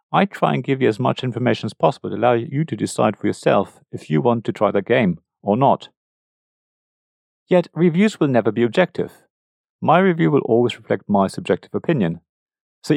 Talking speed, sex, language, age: 190 wpm, male, English, 40-59